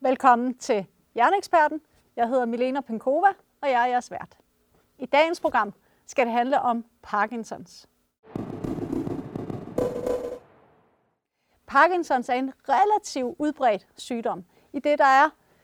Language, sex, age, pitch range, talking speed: Danish, female, 30-49, 250-315 Hz, 115 wpm